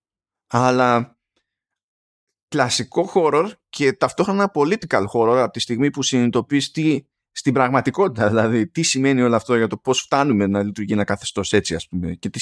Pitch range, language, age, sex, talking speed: 110-145 Hz, Greek, 20-39, male, 150 wpm